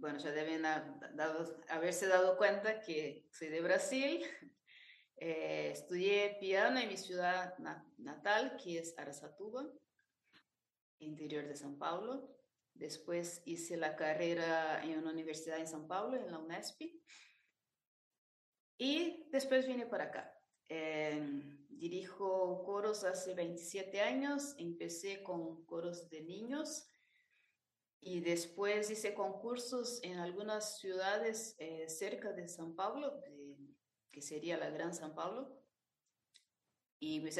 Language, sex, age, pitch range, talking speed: Spanish, female, 30-49, 160-215 Hz, 120 wpm